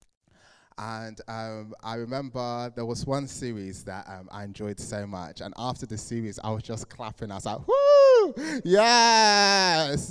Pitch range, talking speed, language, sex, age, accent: 100-125 Hz, 160 wpm, English, male, 20-39, British